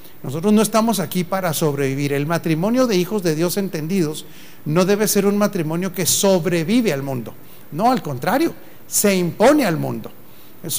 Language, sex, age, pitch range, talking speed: Spanish, male, 40-59, 160-205 Hz, 165 wpm